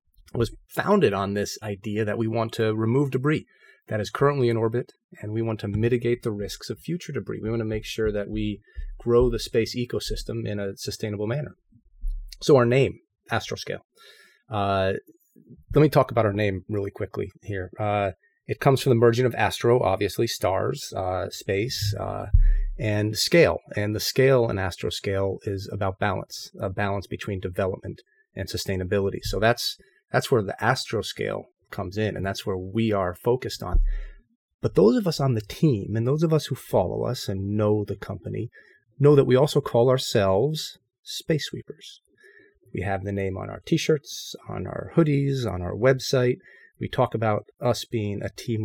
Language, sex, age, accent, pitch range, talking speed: English, male, 30-49, American, 100-125 Hz, 180 wpm